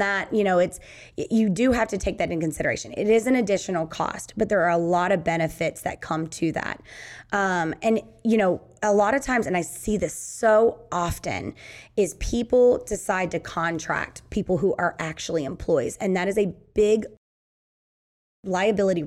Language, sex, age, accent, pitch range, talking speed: English, female, 20-39, American, 180-225 Hz, 185 wpm